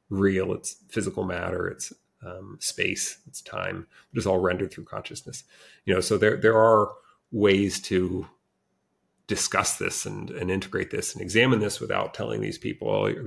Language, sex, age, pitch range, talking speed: English, male, 30-49, 90-110 Hz, 165 wpm